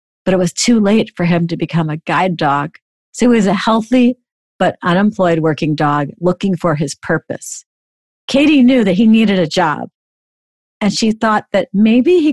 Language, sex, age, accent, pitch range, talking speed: English, female, 50-69, American, 170-215 Hz, 185 wpm